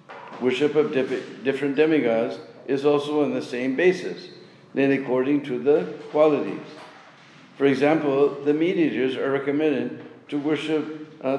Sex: male